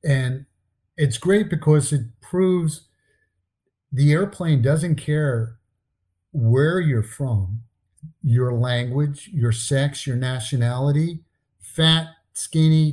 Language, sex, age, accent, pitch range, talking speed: English, male, 50-69, American, 115-150 Hz, 100 wpm